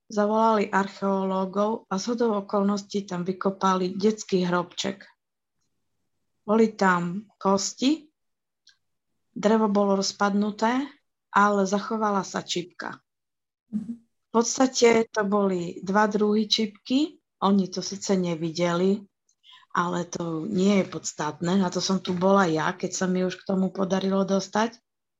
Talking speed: 115 wpm